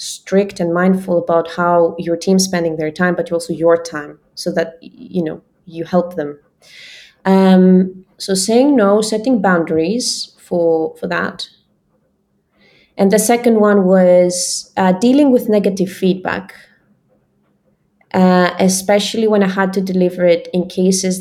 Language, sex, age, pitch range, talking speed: Italian, female, 20-39, 170-195 Hz, 140 wpm